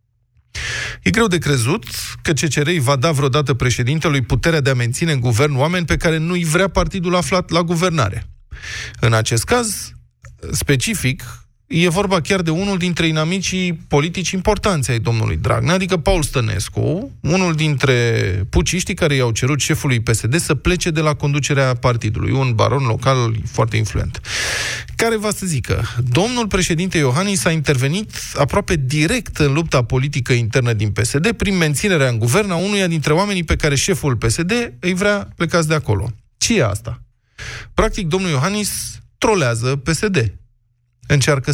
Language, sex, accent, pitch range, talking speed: Romanian, male, native, 120-170 Hz, 155 wpm